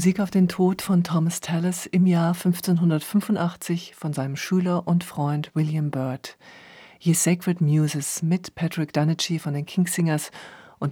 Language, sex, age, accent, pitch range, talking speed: German, female, 50-69, German, 150-180 Hz, 150 wpm